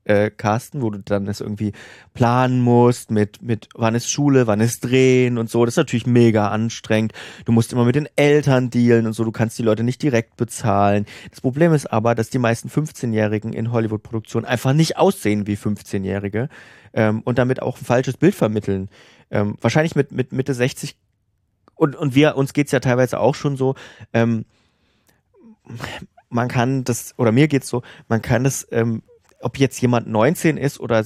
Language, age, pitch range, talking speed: German, 30-49, 110-130 Hz, 190 wpm